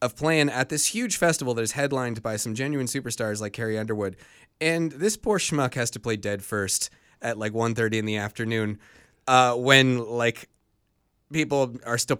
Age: 20-39